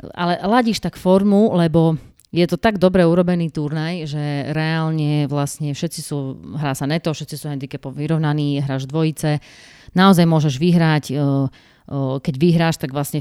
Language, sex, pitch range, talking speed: Slovak, female, 140-160 Hz, 145 wpm